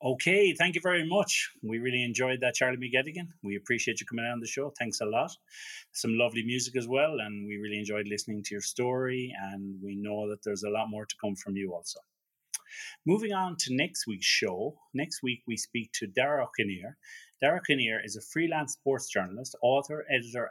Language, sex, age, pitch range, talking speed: English, male, 30-49, 110-150 Hz, 200 wpm